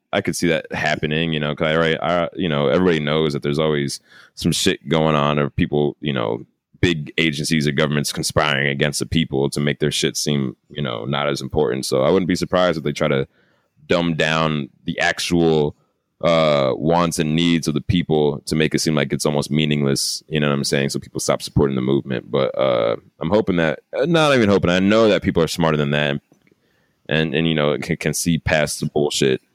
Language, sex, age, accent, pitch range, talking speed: English, male, 20-39, American, 70-85 Hz, 220 wpm